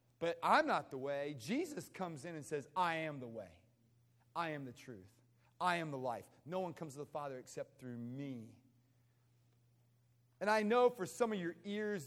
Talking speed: 195 wpm